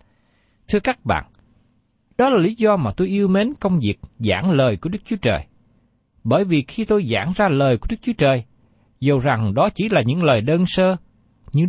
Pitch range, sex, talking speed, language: 115-190 Hz, male, 205 wpm, Vietnamese